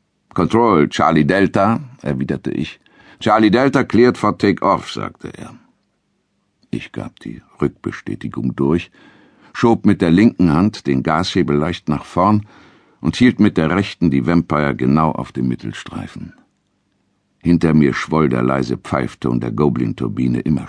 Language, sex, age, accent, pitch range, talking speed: German, male, 60-79, German, 65-95 Hz, 135 wpm